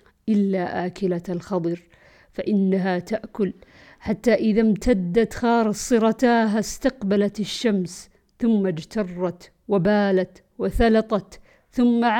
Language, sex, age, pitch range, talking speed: Arabic, female, 50-69, 180-220 Hz, 80 wpm